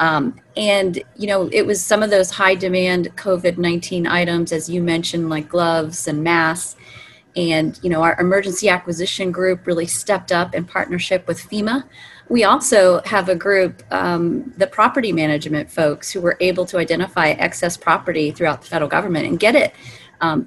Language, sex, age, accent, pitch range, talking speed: English, female, 30-49, American, 165-190 Hz, 175 wpm